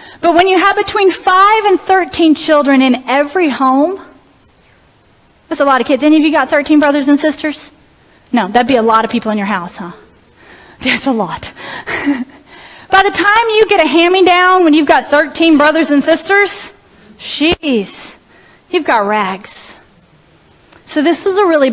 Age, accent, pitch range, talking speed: 30-49, American, 245-350 Hz, 175 wpm